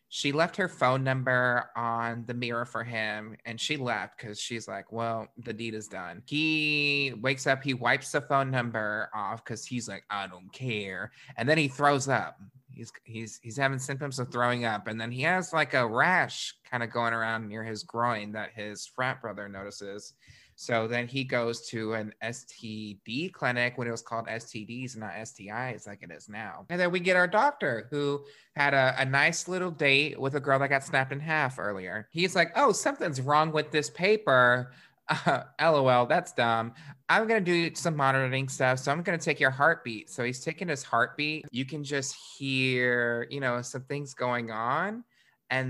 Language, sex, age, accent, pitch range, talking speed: English, male, 20-39, American, 115-145 Hz, 200 wpm